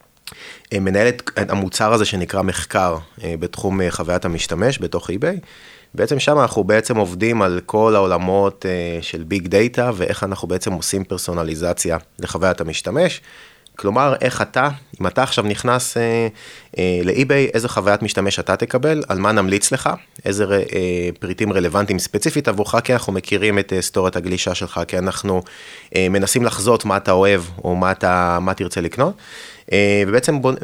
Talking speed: 140 wpm